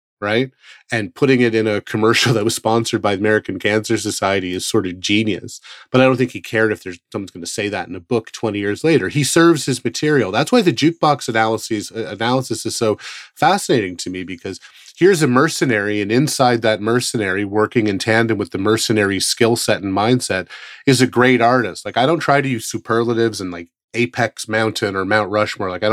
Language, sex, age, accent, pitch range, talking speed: English, male, 30-49, American, 105-120 Hz, 210 wpm